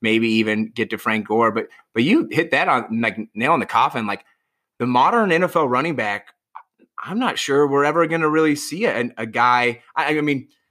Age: 20-39